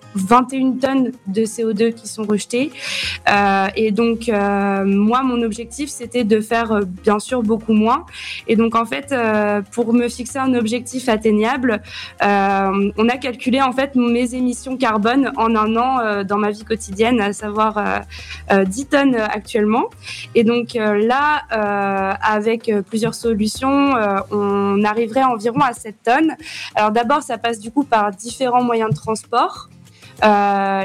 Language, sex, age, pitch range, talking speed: French, female, 20-39, 205-240 Hz, 160 wpm